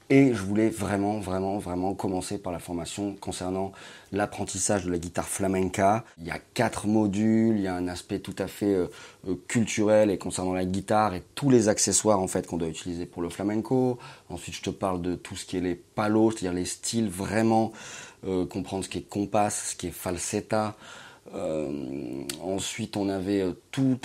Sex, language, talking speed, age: male, French, 190 wpm, 30-49